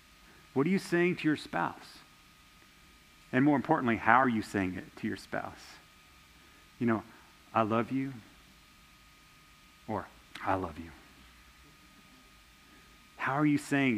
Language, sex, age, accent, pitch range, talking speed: English, male, 40-59, American, 115-185 Hz, 135 wpm